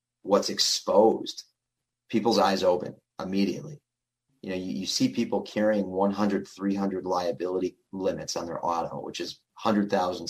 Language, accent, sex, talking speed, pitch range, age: English, American, male, 145 wpm, 90-115 Hz, 30-49